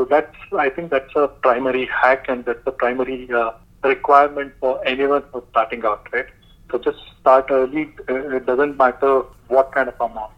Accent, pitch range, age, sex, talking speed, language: Indian, 130-150 Hz, 30-49, male, 170 wpm, English